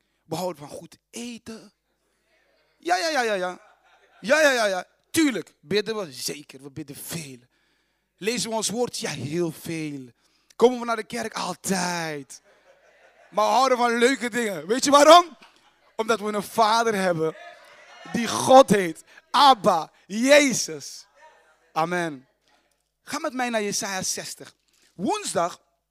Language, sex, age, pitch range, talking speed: Dutch, male, 30-49, 160-240 Hz, 140 wpm